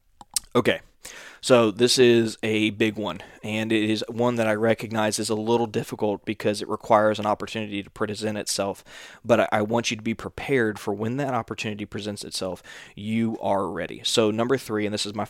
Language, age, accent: English, 20-39, American